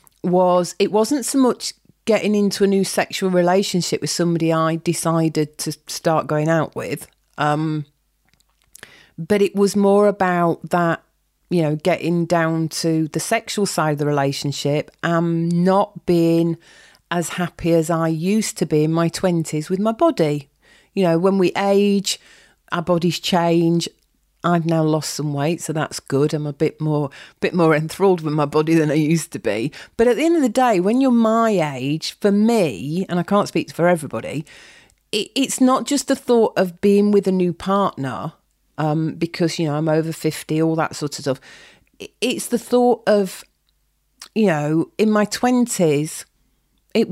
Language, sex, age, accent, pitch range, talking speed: English, female, 40-59, British, 155-200 Hz, 175 wpm